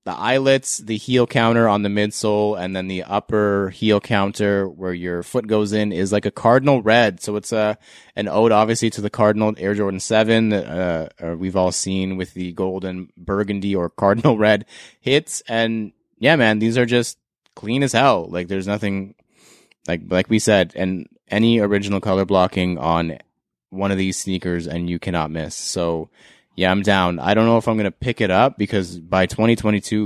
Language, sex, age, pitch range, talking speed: English, male, 20-39, 90-110 Hz, 190 wpm